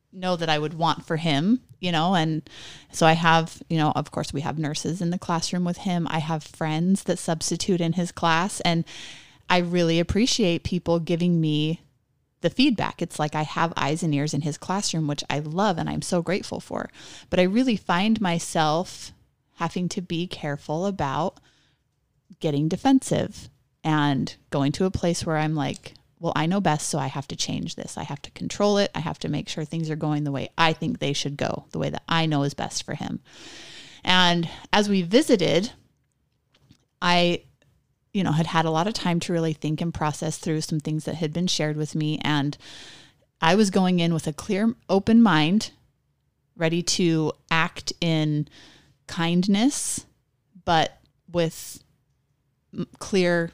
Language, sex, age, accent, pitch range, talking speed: English, female, 30-49, American, 155-180 Hz, 185 wpm